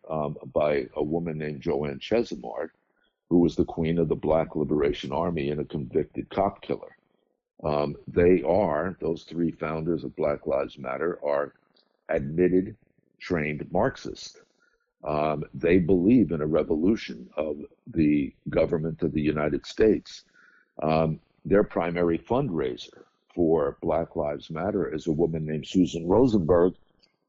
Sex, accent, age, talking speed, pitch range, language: male, American, 50-69, 135 wpm, 75-90 Hz, English